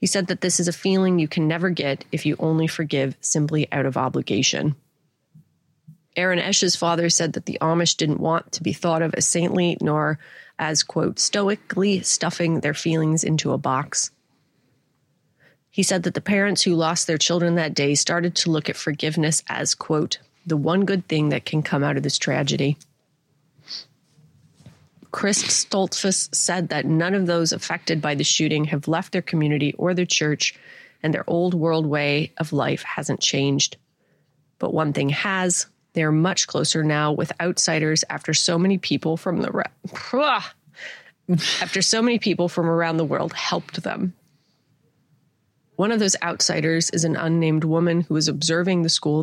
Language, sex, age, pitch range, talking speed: English, female, 30-49, 150-175 Hz, 170 wpm